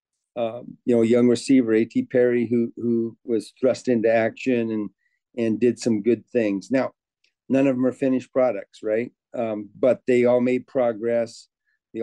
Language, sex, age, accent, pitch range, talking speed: English, male, 40-59, American, 115-125 Hz, 175 wpm